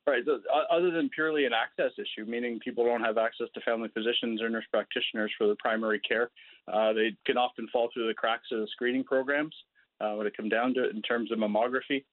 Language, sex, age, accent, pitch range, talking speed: English, male, 30-49, American, 110-130 Hz, 225 wpm